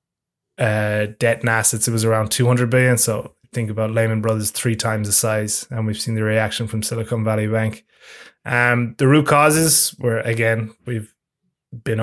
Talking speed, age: 175 wpm, 20-39